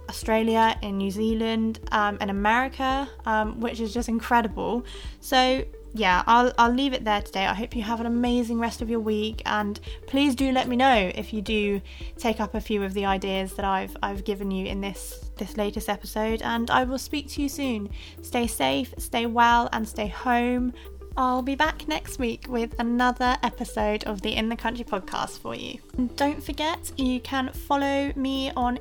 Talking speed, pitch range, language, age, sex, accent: 195 wpm, 220-260 Hz, English, 20-39, female, British